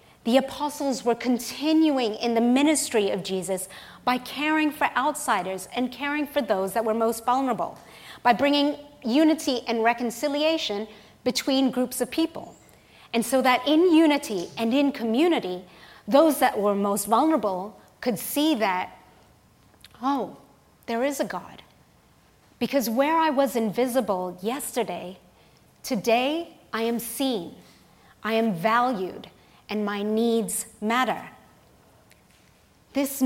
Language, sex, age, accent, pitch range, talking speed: English, female, 30-49, American, 210-285 Hz, 125 wpm